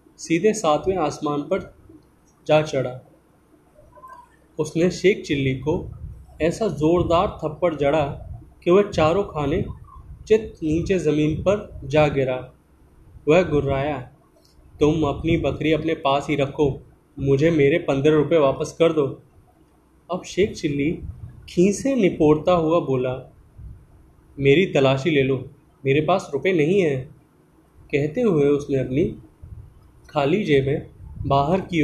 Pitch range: 135-165 Hz